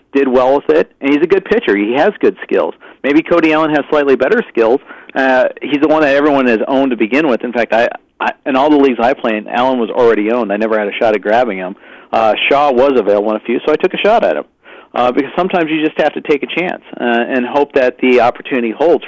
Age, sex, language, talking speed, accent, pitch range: 40-59, male, English, 265 wpm, American, 130-180 Hz